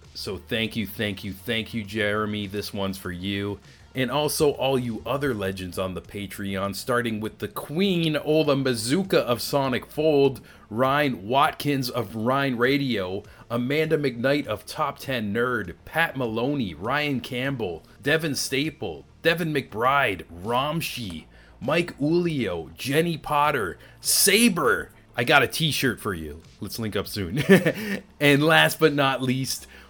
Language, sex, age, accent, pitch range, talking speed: English, male, 30-49, American, 100-135 Hz, 140 wpm